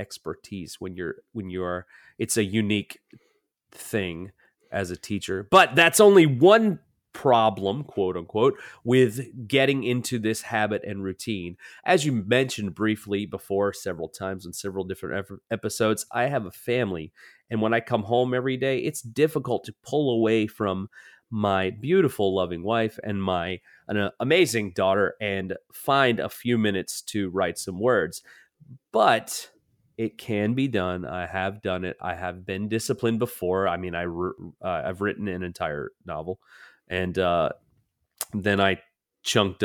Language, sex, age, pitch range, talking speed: English, male, 30-49, 95-120 Hz, 155 wpm